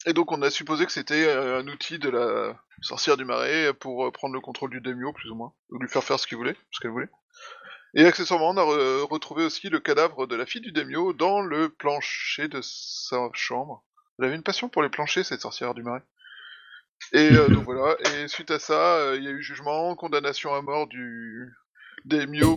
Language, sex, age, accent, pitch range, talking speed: French, male, 20-39, French, 125-175 Hz, 220 wpm